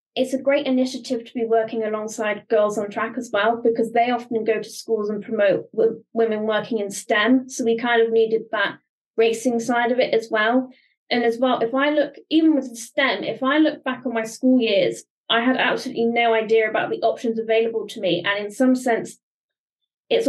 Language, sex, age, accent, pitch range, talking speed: English, female, 20-39, British, 225-265 Hz, 205 wpm